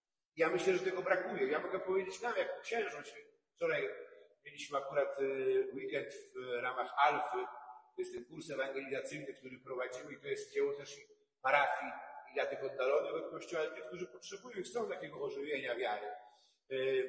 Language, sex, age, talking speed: Polish, male, 50-69, 165 wpm